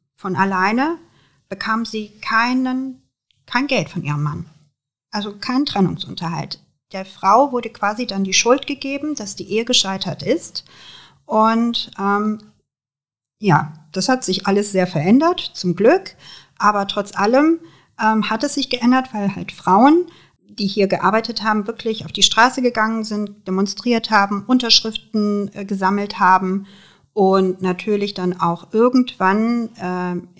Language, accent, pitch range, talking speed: German, German, 185-235 Hz, 135 wpm